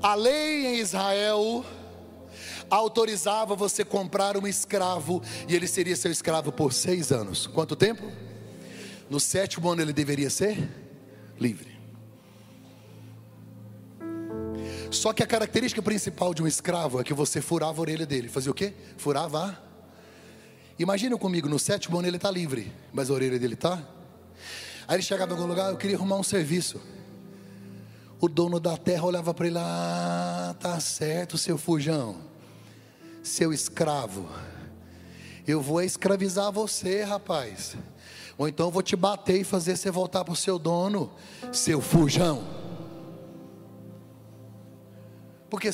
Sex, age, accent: male, 30-49, Brazilian